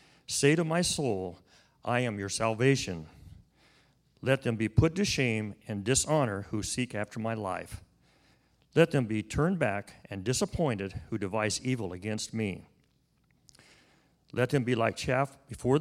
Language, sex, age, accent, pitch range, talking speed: English, male, 50-69, American, 105-135 Hz, 150 wpm